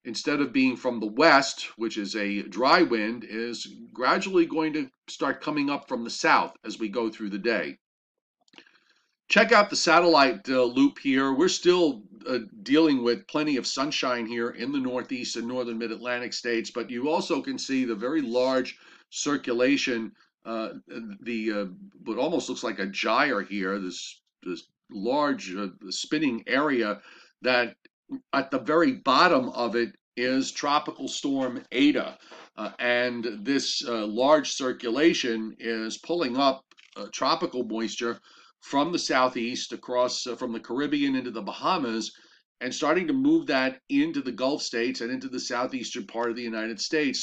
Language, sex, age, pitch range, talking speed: English, male, 50-69, 115-170 Hz, 160 wpm